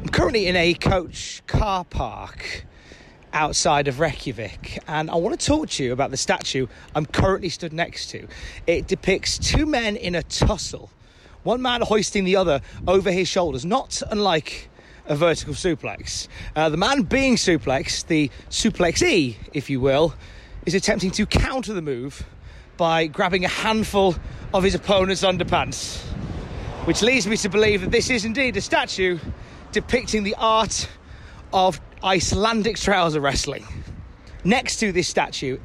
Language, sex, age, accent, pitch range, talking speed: English, male, 30-49, British, 145-200 Hz, 155 wpm